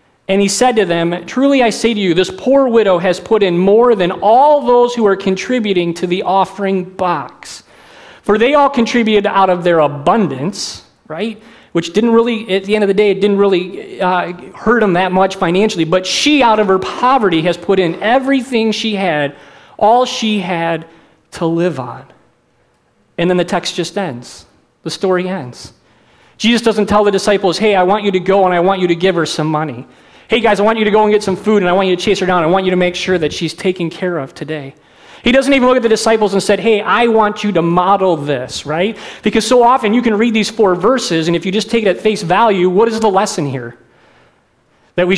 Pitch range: 175-220 Hz